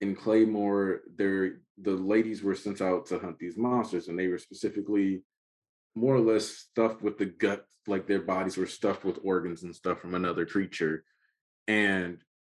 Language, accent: English, American